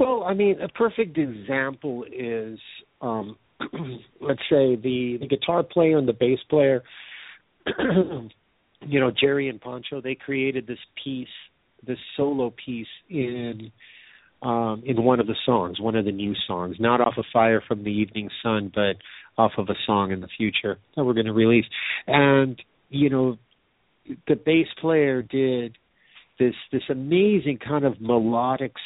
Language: English